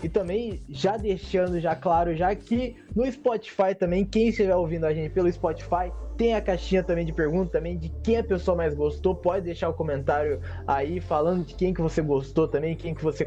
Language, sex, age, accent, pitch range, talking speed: Portuguese, male, 20-39, Brazilian, 155-215 Hz, 210 wpm